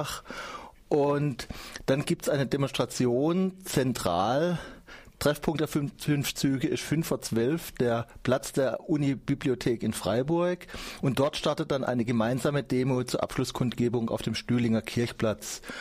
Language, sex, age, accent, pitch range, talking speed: German, male, 30-49, German, 115-140 Hz, 130 wpm